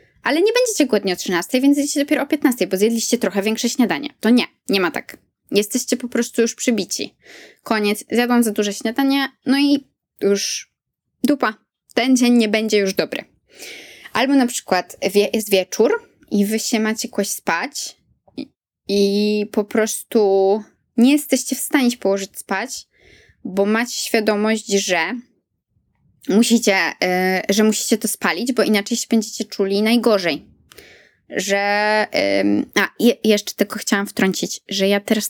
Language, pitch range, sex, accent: Polish, 200-250 Hz, female, native